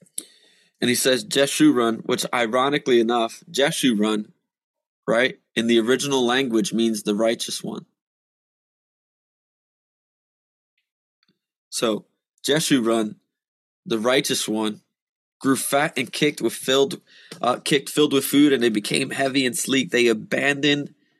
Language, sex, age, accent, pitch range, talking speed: English, male, 20-39, American, 115-145 Hz, 115 wpm